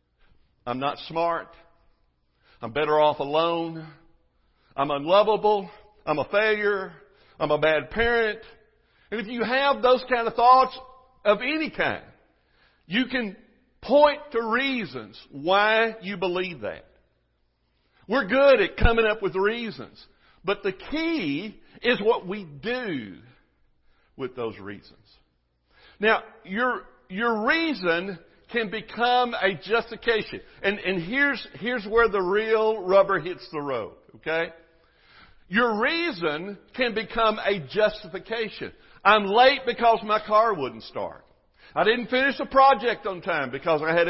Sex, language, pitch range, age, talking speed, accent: male, English, 165-240 Hz, 60-79, 130 wpm, American